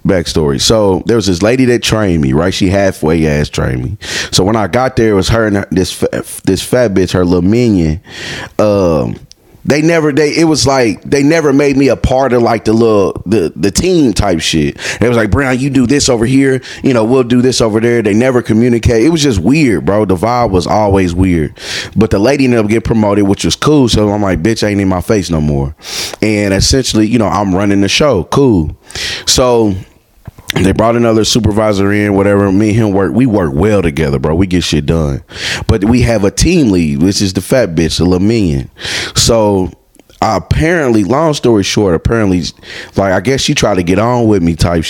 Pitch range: 95-120 Hz